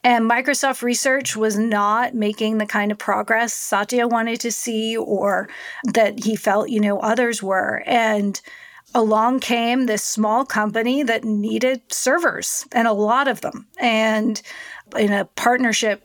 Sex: female